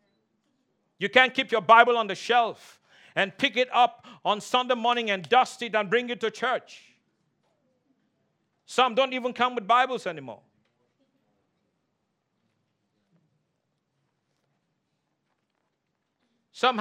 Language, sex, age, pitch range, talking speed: English, male, 50-69, 220-265 Hz, 110 wpm